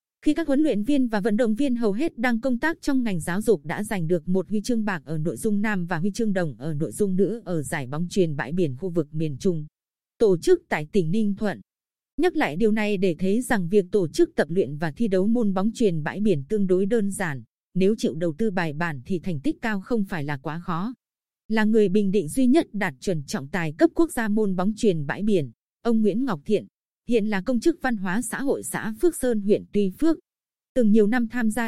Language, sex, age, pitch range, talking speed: Vietnamese, female, 20-39, 185-235 Hz, 250 wpm